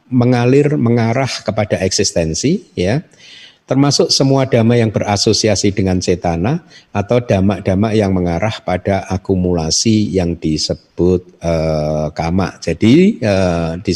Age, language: 50-69, Indonesian